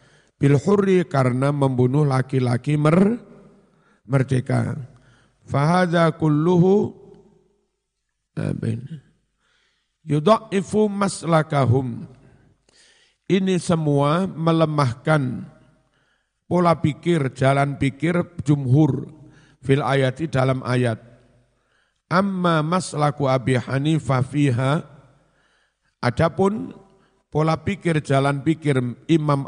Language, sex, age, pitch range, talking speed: Indonesian, male, 50-69, 135-175 Hz, 65 wpm